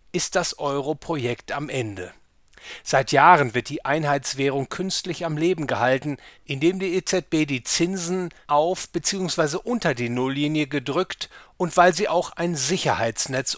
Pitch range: 135-175 Hz